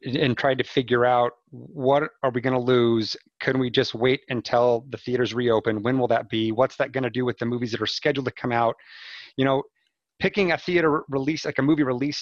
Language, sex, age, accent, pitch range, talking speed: English, male, 30-49, American, 120-140 Hz, 230 wpm